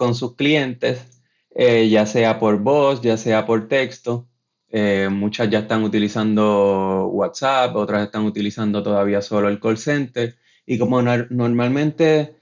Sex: male